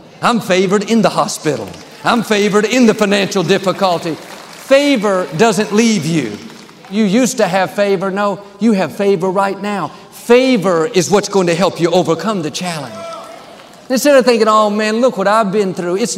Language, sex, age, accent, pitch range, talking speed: English, male, 50-69, American, 180-225 Hz, 175 wpm